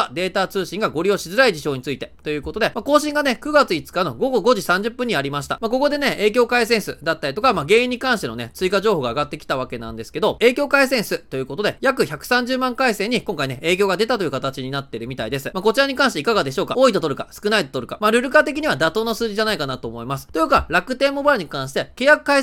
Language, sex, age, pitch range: Japanese, male, 20-39, 150-250 Hz